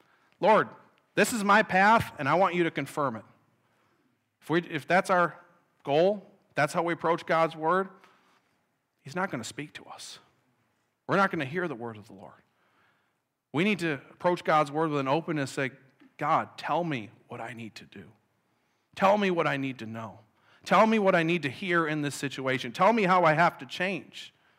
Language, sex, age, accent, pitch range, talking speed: English, male, 40-59, American, 130-175 Hz, 205 wpm